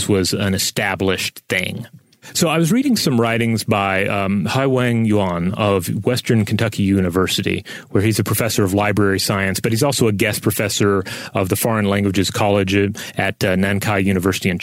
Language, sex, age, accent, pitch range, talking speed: English, male, 30-49, American, 100-120 Hz, 170 wpm